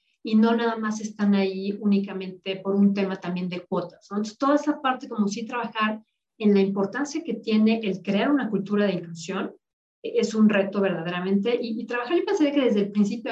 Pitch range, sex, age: 195-235 Hz, female, 40-59